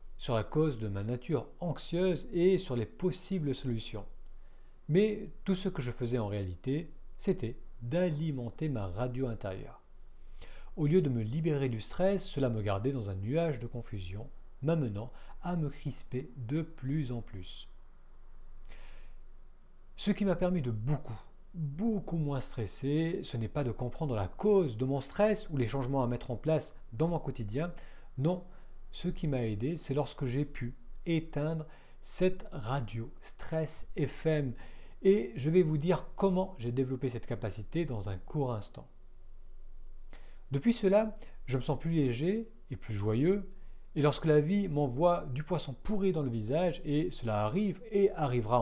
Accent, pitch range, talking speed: French, 110-165 Hz, 160 wpm